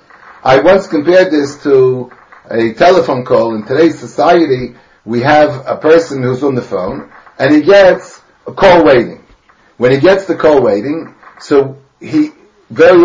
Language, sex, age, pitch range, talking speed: English, male, 60-79, 140-195 Hz, 155 wpm